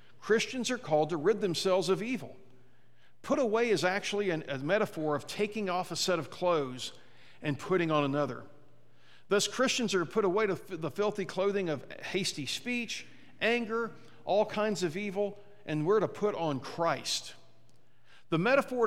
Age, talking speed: 50-69, 165 wpm